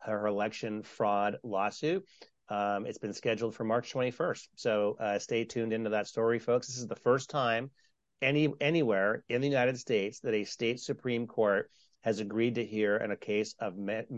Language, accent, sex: English, American, male